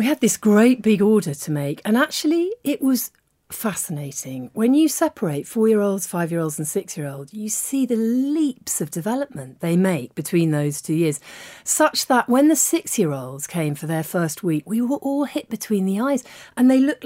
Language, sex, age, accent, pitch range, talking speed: English, female, 40-59, British, 180-245 Hz, 210 wpm